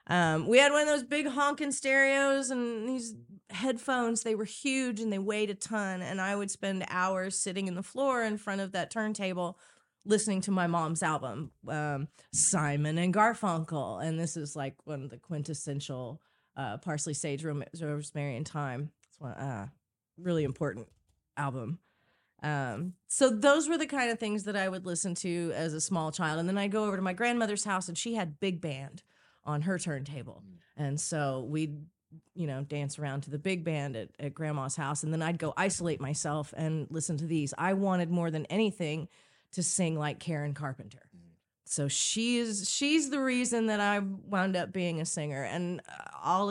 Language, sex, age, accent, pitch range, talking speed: English, female, 30-49, American, 150-200 Hz, 190 wpm